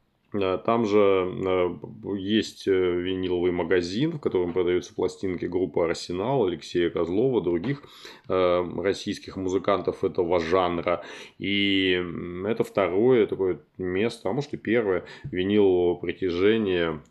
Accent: native